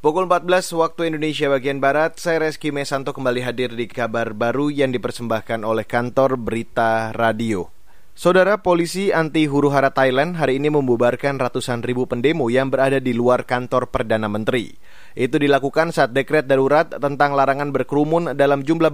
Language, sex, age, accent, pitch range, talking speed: Indonesian, male, 20-39, native, 125-155 Hz, 155 wpm